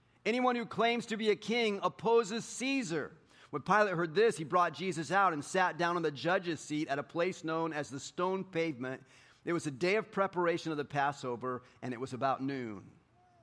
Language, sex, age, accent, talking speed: English, male, 40-59, American, 205 wpm